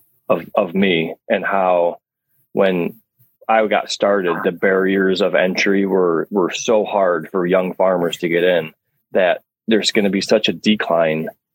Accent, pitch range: American, 85-100 Hz